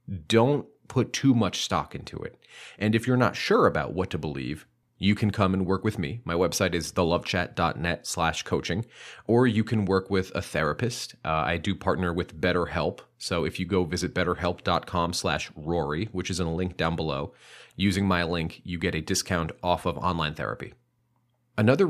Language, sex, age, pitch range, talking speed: English, male, 30-49, 80-100 Hz, 190 wpm